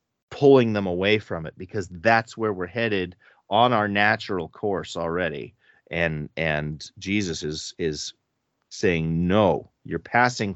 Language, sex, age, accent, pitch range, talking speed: English, male, 40-59, American, 90-120 Hz, 135 wpm